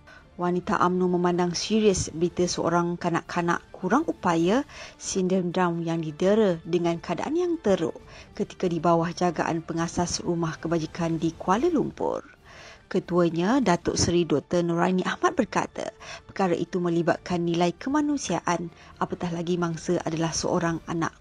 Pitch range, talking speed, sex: 170-195 Hz, 125 wpm, female